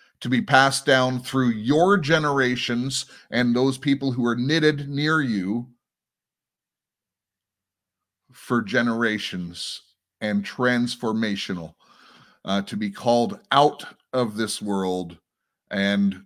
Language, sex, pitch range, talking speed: English, male, 100-125 Hz, 105 wpm